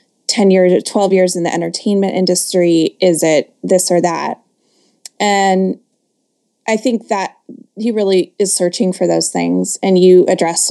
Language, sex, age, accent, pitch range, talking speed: English, female, 20-39, American, 180-230 Hz, 145 wpm